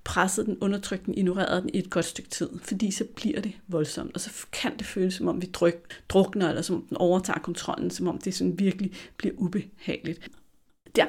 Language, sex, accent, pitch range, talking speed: Danish, female, native, 180-215 Hz, 215 wpm